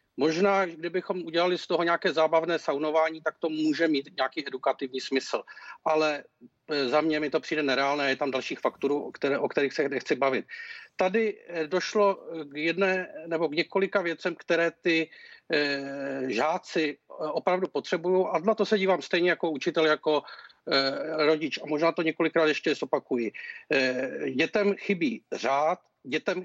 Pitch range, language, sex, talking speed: 155-205 Hz, Czech, male, 145 wpm